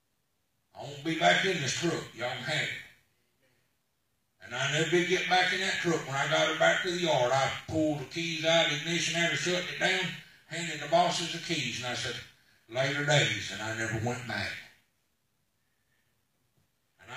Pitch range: 135-180 Hz